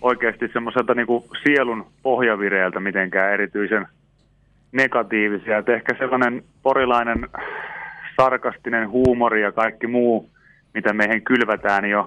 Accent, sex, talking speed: native, male, 110 wpm